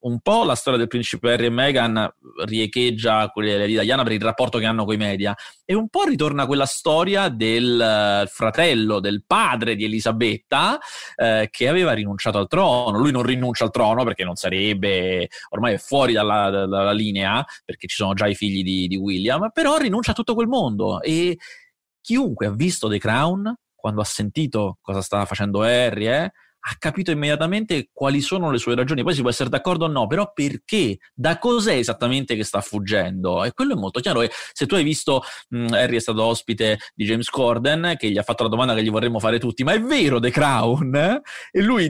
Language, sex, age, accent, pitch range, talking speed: Italian, male, 30-49, native, 110-155 Hz, 200 wpm